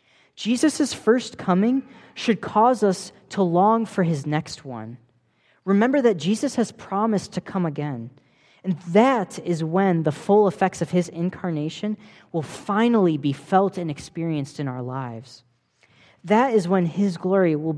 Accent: American